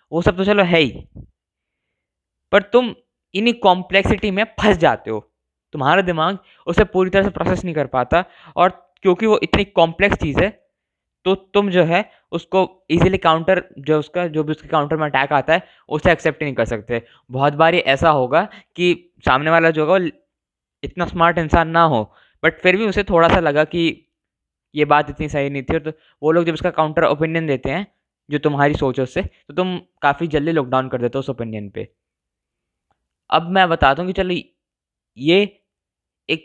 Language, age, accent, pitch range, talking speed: Hindi, 10-29, native, 145-180 Hz, 190 wpm